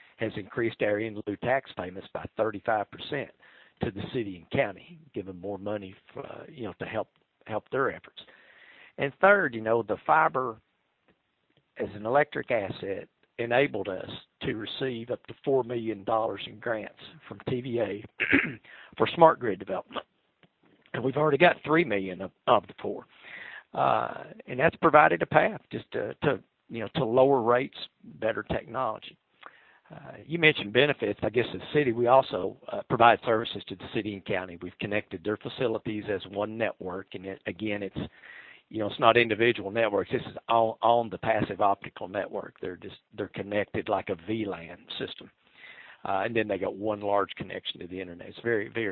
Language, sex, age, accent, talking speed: English, male, 50-69, American, 175 wpm